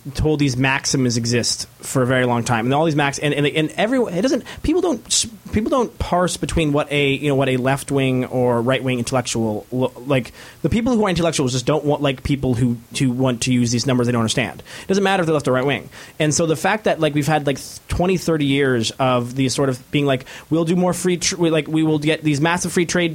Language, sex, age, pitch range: English, male, 20-39, 125-155 Hz